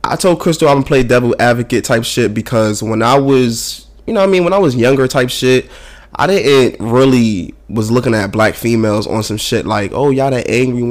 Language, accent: English, American